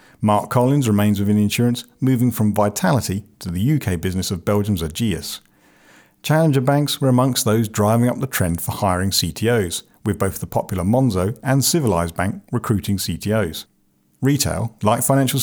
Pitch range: 95-125 Hz